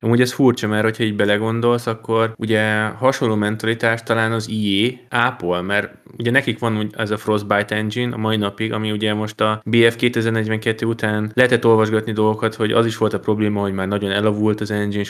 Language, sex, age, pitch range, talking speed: Hungarian, male, 20-39, 100-120 Hz, 185 wpm